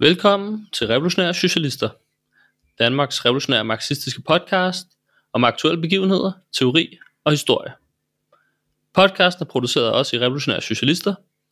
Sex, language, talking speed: male, Danish, 110 wpm